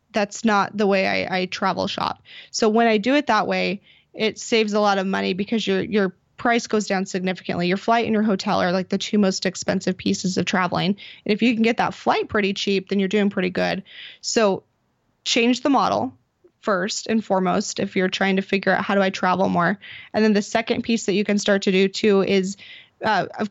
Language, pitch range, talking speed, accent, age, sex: English, 190-225 Hz, 225 wpm, American, 20-39, female